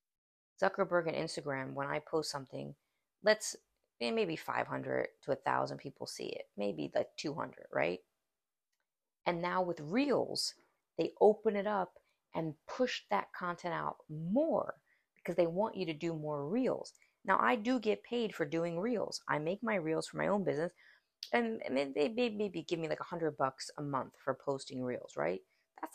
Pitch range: 150-210 Hz